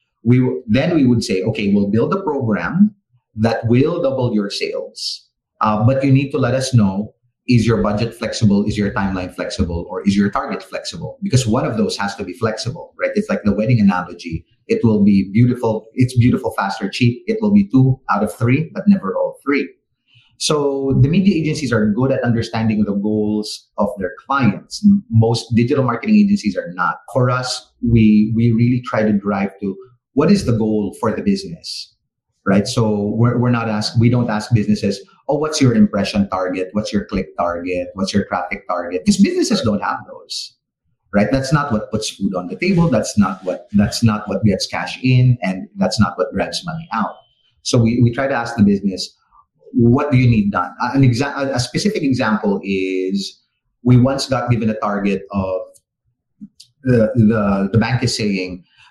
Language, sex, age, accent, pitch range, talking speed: English, male, 30-49, Filipino, 105-130 Hz, 195 wpm